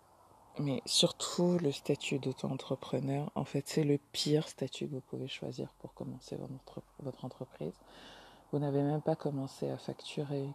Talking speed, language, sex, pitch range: 160 wpm, English, female, 130-155 Hz